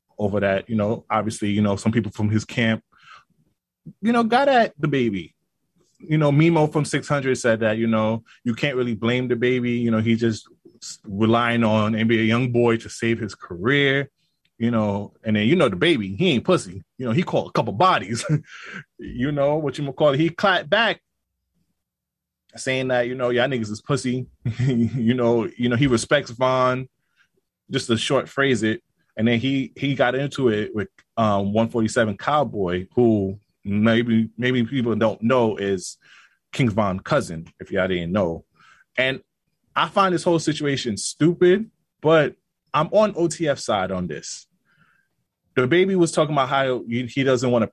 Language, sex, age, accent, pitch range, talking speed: English, male, 20-39, American, 110-140 Hz, 180 wpm